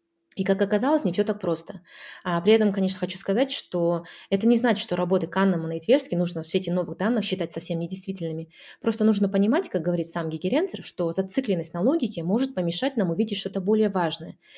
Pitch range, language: 175-220 Hz, Russian